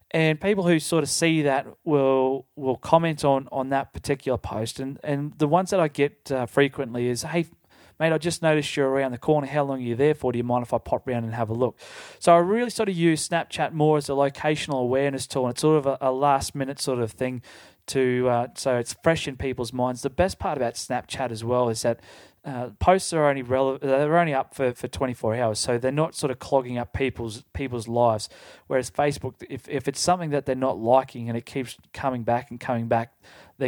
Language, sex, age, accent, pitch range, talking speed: English, male, 30-49, Australian, 120-145 Hz, 245 wpm